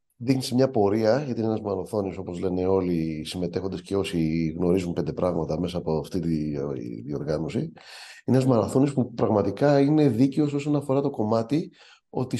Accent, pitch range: native, 95-130 Hz